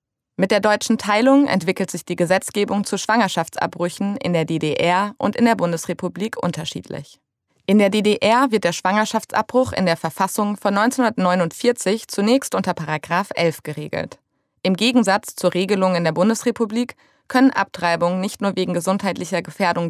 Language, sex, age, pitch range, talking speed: German, female, 20-39, 175-225 Hz, 145 wpm